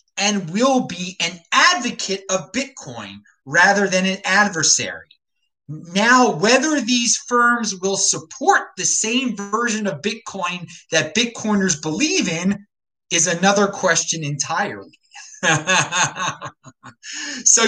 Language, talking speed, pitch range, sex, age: English, 105 wpm, 175-245 Hz, male, 30-49